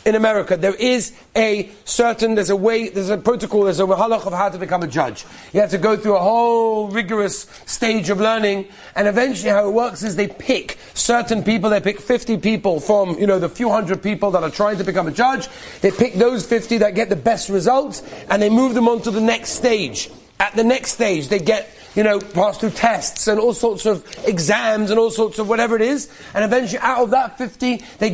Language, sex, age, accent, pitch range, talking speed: English, male, 30-49, British, 205-235 Hz, 230 wpm